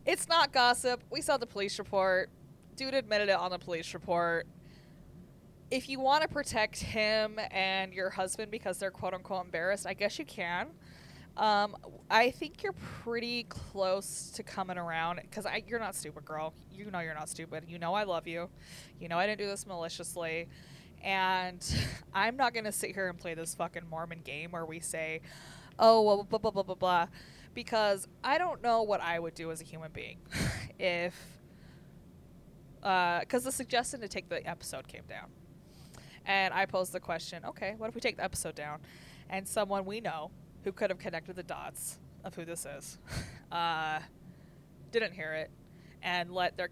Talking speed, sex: 185 wpm, female